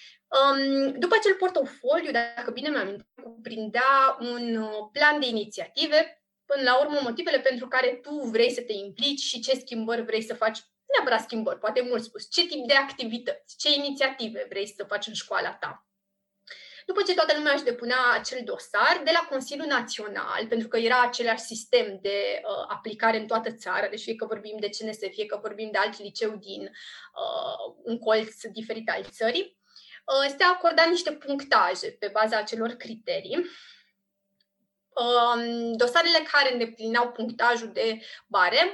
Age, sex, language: 20-39, female, Romanian